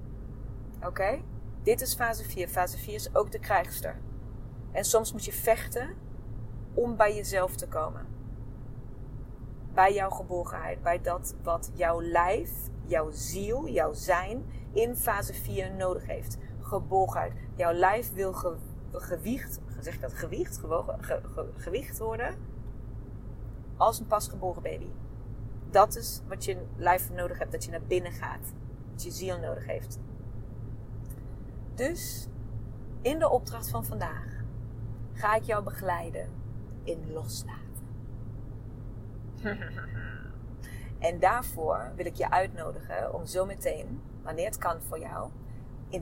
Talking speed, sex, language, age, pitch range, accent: 125 wpm, female, Dutch, 30-49, 115-135 Hz, Dutch